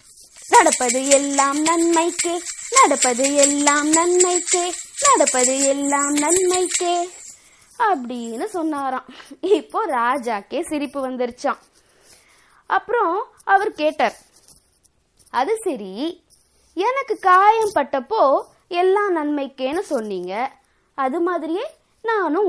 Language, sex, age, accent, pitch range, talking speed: Tamil, female, 20-39, native, 255-360 Hz, 60 wpm